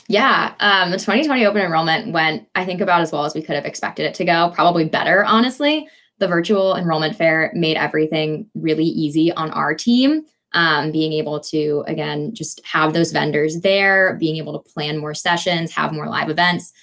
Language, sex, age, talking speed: English, female, 10-29, 195 wpm